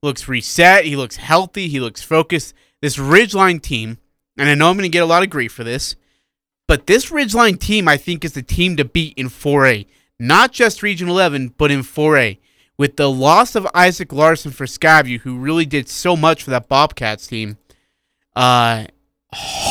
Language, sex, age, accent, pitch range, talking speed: English, male, 30-49, American, 130-170 Hz, 190 wpm